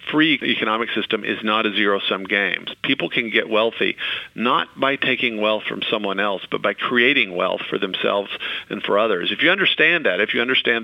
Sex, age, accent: male, 50-69, American